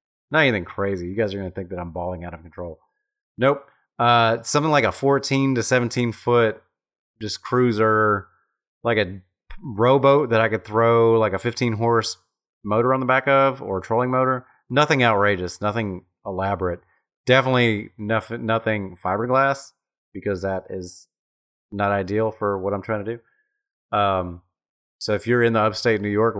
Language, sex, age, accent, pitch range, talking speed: English, male, 30-49, American, 95-120 Hz, 165 wpm